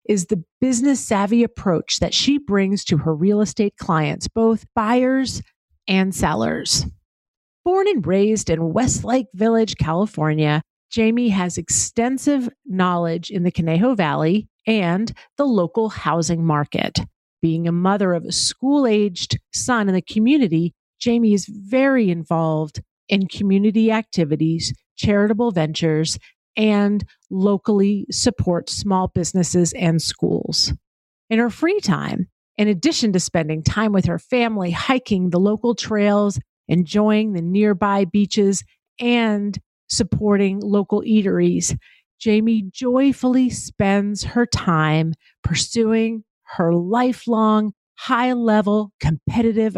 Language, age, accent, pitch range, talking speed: English, 40-59, American, 170-225 Hz, 115 wpm